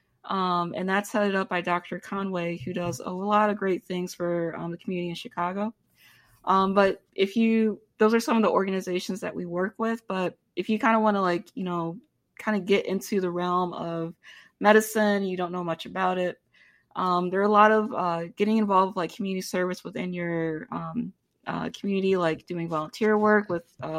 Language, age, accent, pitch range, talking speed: English, 20-39, American, 175-205 Hz, 210 wpm